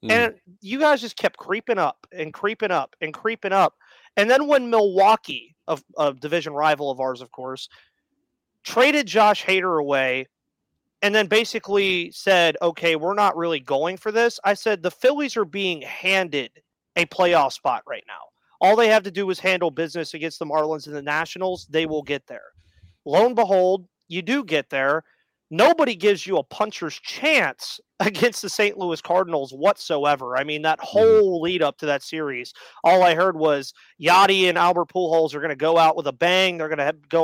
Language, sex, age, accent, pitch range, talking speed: English, male, 30-49, American, 160-205 Hz, 190 wpm